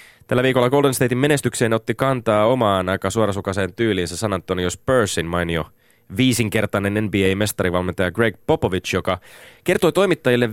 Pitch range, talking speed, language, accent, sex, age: 90-125 Hz, 125 wpm, Finnish, native, male, 30-49